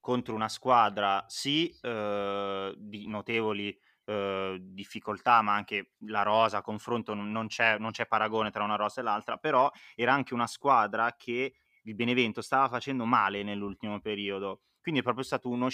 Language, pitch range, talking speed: Italian, 105-130 Hz, 165 wpm